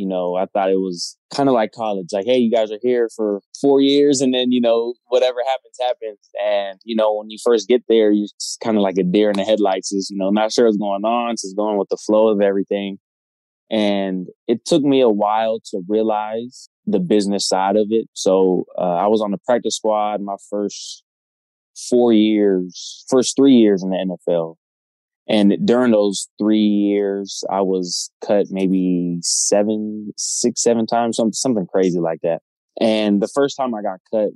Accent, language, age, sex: American, English, 20-39, male